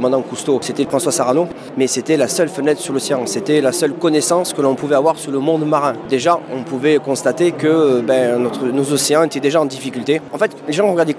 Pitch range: 130-165 Hz